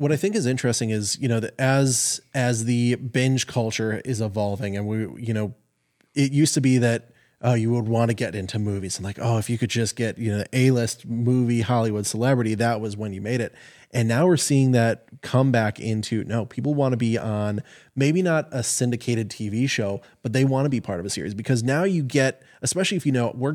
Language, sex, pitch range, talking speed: English, male, 110-130 Hz, 235 wpm